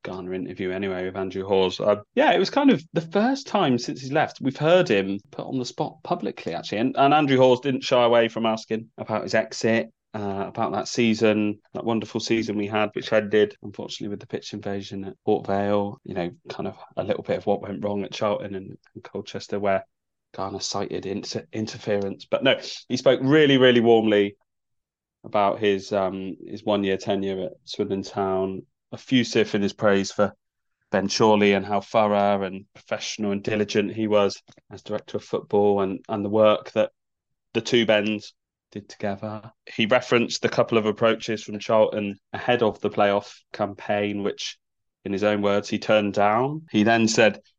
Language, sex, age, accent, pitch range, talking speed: English, male, 30-49, British, 100-115 Hz, 190 wpm